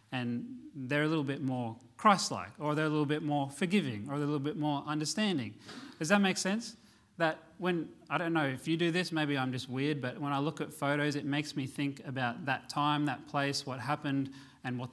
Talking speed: 230 wpm